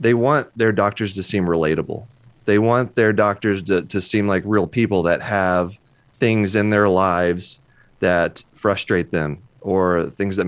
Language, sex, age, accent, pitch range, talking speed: English, male, 30-49, American, 90-115 Hz, 165 wpm